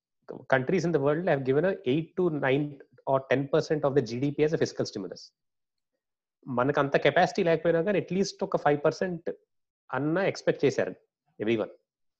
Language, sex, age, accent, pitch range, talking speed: Telugu, male, 30-49, native, 135-185 Hz, 160 wpm